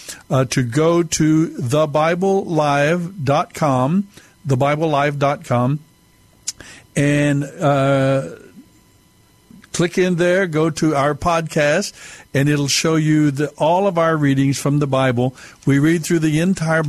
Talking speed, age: 115 wpm, 60-79